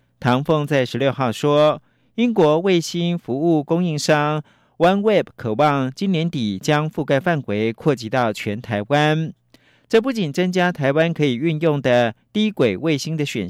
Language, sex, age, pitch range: Chinese, male, 50-69, 115-165 Hz